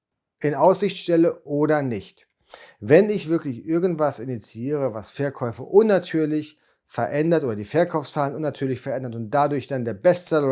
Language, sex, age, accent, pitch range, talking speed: German, male, 40-59, German, 120-160 Hz, 135 wpm